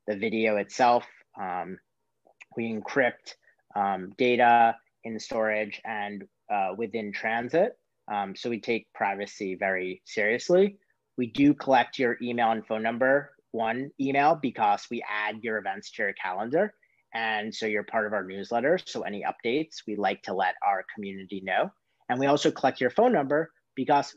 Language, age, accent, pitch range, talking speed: English, 30-49, American, 105-140 Hz, 160 wpm